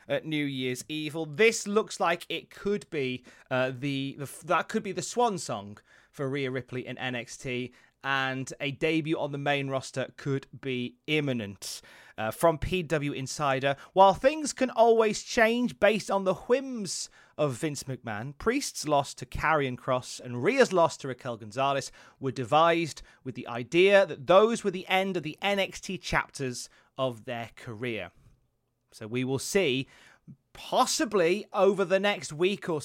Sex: male